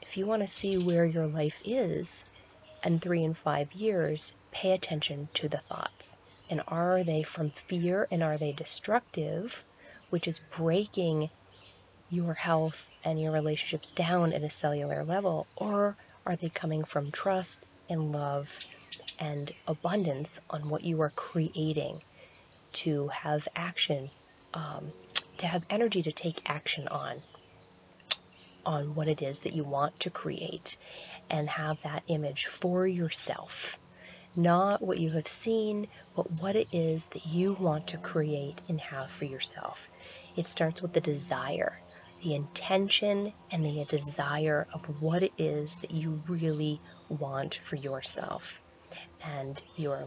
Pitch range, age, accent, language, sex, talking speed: 145-175 Hz, 30-49, American, English, female, 145 wpm